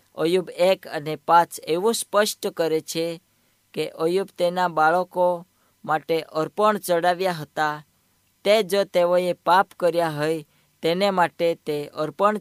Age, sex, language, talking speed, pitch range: 20-39, female, Hindi, 90 wpm, 155-185 Hz